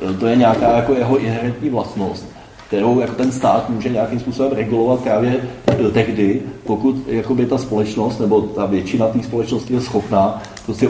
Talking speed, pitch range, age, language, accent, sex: 155 wpm, 105-120 Hz, 30-49, Czech, native, male